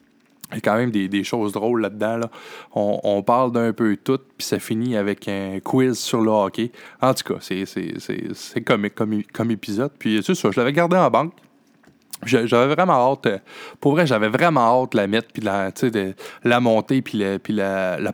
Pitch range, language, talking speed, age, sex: 105-140 Hz, French, 215 wpm, 20-39, male